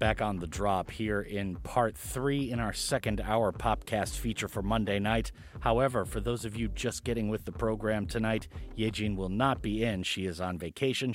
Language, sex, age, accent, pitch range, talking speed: English, male, 40-59, American, 95-120 Hz, 200 wpm